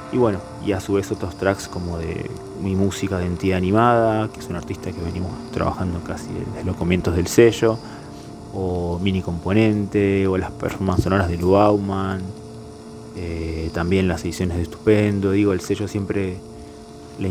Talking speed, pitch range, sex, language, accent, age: 170 wpm, 90-105 Hz, male, Spanish, Argentinian, 20-39